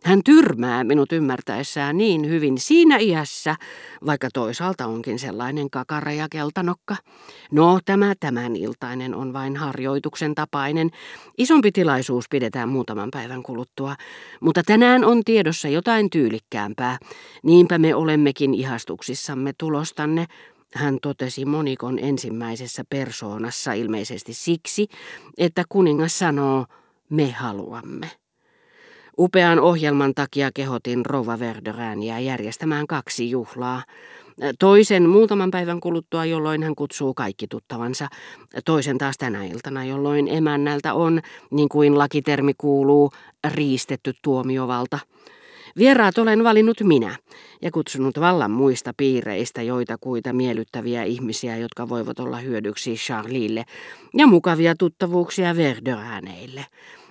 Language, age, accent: Finnish, 50-69, native